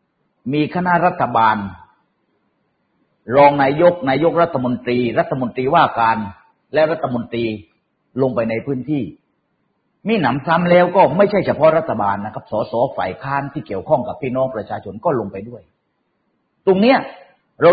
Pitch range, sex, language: 115-175 Hz, male, Thai